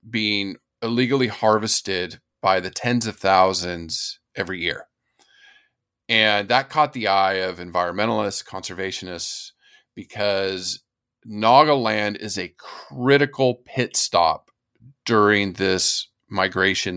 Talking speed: 100 wpm